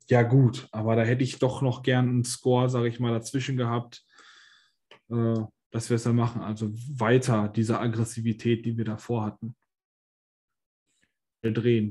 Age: 20-39